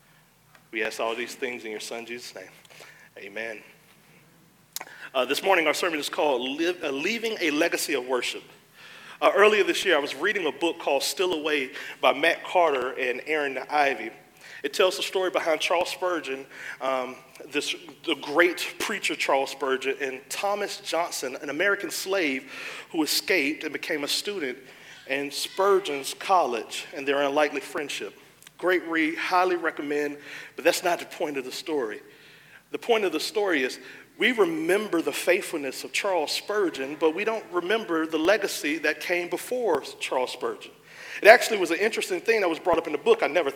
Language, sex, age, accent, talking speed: English, male, 40-59, American, 175 wpm